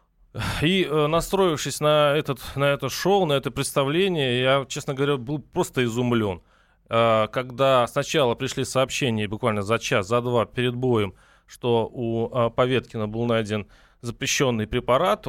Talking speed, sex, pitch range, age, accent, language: 135 wpm, male, 120-155 Hz, 20-39, native, Russian